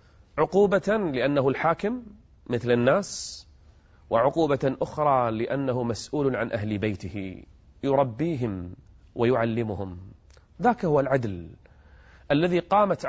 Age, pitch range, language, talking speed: 30-49, 95-155 Hz, Arabic, 85 wpm